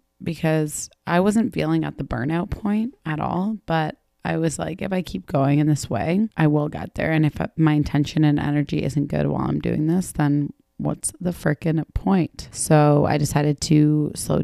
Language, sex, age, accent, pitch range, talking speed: English, female, 20-39, American, 150-175 Hz, 195 wpm